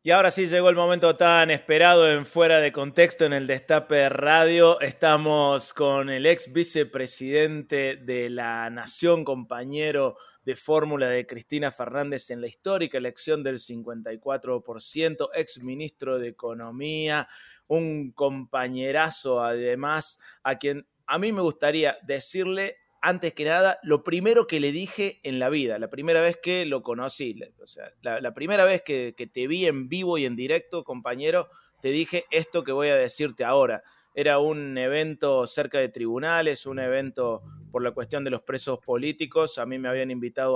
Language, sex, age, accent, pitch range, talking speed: Spanish, male, 20-39, Argentinian, 125-160 Hz, 160 wpm